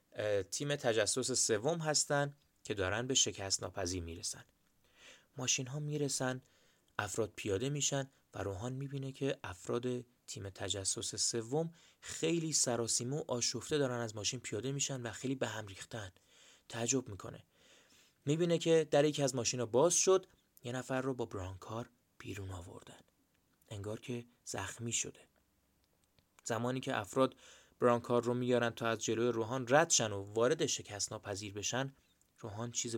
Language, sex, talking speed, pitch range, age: Persian, male, 140 wpm, 105-135 Hz, 30-49